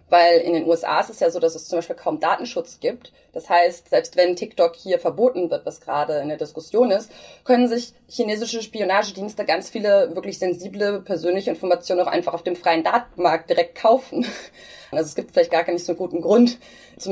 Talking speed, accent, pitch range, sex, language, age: 200 wpm, German, 170-235 Hz, female, German, 20-39